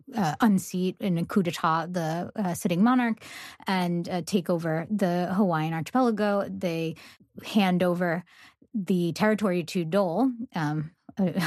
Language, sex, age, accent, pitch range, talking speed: English, female, 20-39, American, 175-210 Hz, 130 wpm